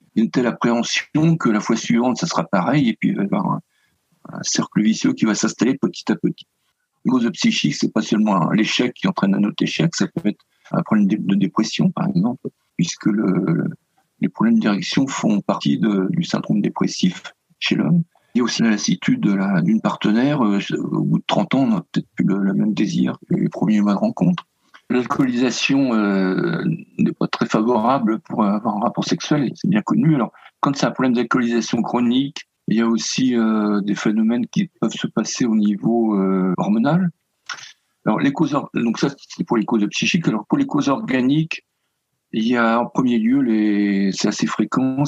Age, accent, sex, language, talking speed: 50-69, French, male, French, 210 wpm